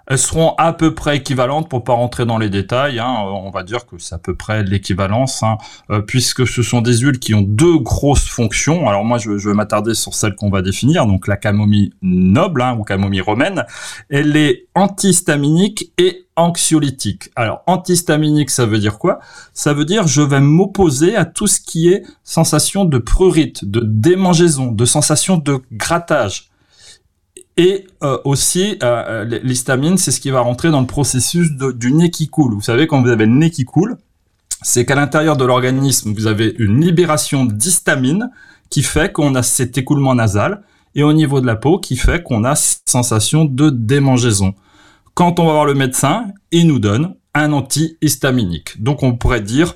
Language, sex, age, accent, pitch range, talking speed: French, male, 30-49, French, 115-155 Hz, 190 wpm